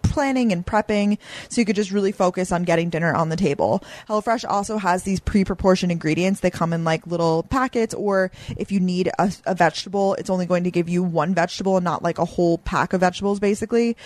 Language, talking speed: English, 220 wpm